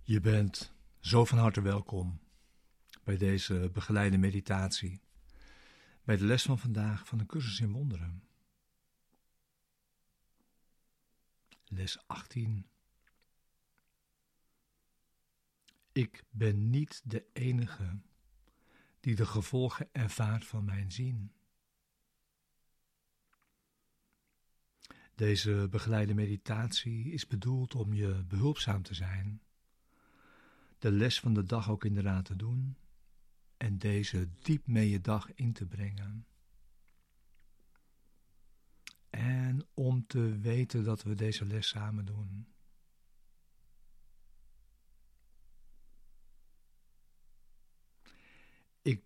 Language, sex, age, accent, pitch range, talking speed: Dutch, male, 60-79, Dutch, 100-120 Hz, 90 wpm